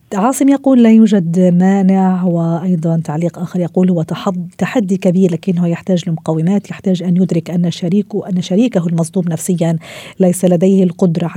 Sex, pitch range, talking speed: female, 170-210 Hz, 140 wpm